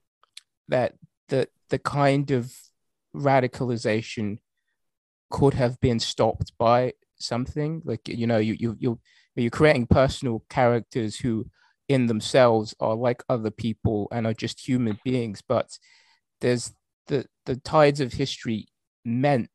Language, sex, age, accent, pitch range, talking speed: English, male, 20-39, British, 105-125 Hz, 130 wpm